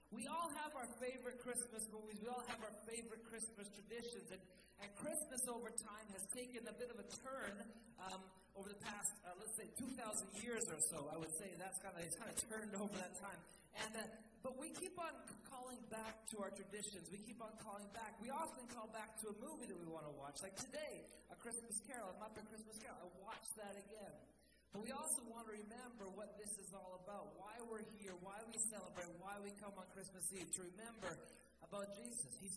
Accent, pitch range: American, 190-230 Hz